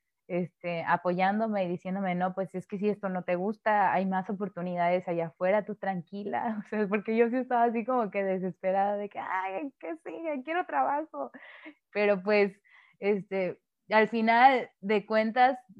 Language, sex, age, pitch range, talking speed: Spanish, female, 20-39, 180-220 Hz, 165 wpm